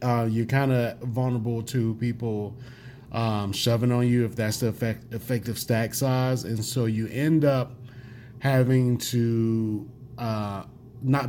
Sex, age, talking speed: male, 30-49, 145 wpm